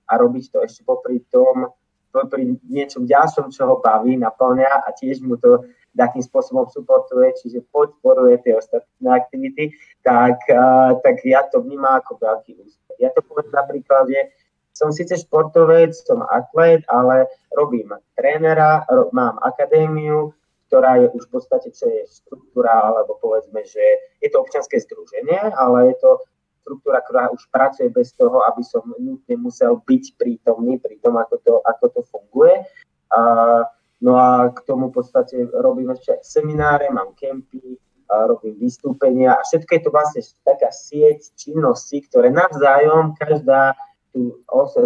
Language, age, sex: Slovak, 20-39, male